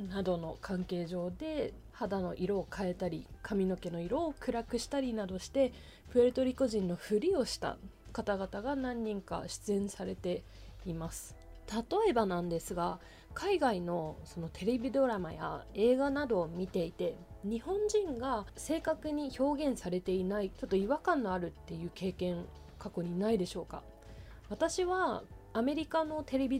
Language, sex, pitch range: Japanese, female, 180-275 Hz